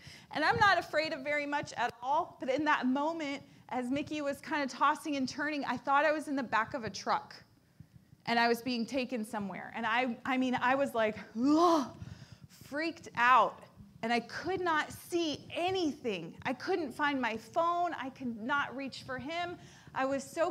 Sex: female